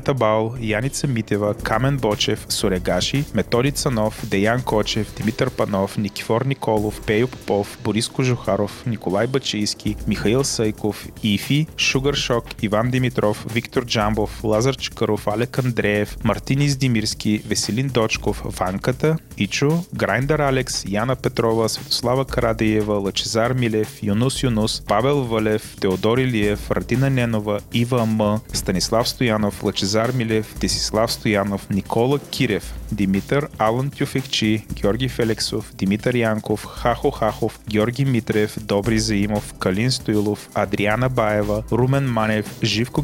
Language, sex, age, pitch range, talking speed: Bulgarian, male, 30-49, 105-125 Hz, 115 wpm